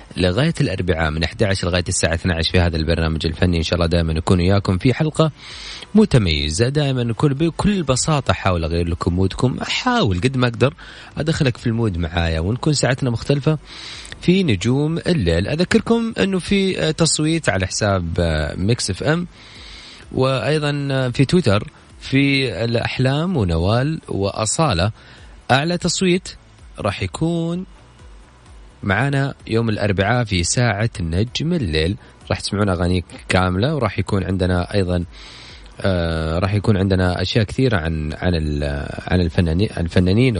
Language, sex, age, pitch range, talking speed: Arabic, male, 30-49, 90-130 Hz, 130 wpm